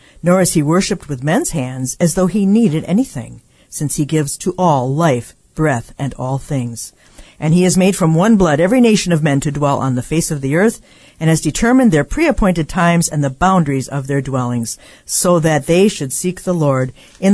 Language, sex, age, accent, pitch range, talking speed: English, female, 50-69, American, 140-185 Hz, 215 wpm